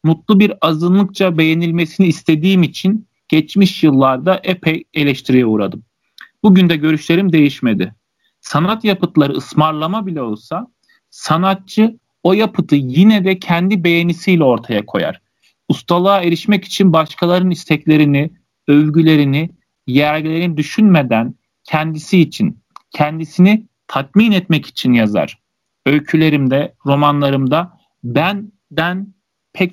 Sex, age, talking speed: male, 40-59, 100 wpm